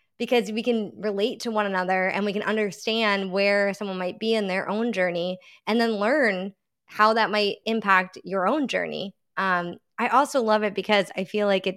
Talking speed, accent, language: 200 wpm, American, English